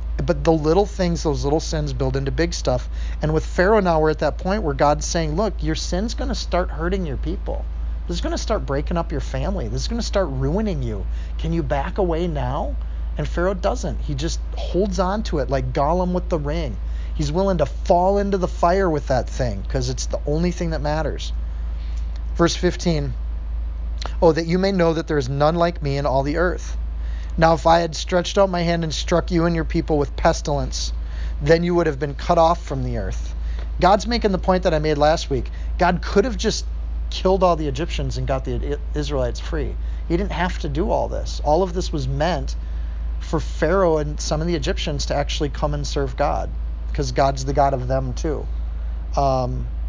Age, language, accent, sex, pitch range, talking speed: 40-59, English, American, male, 115-170 Hz, 220 wpm